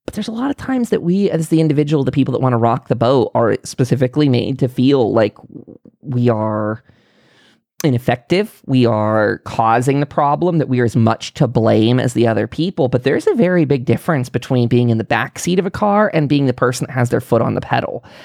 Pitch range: 125-165 Hz